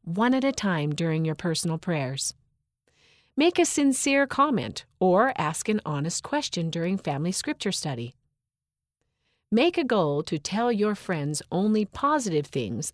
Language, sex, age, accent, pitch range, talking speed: English, female, 40-59, American, 155-225 Hz, 145 wpm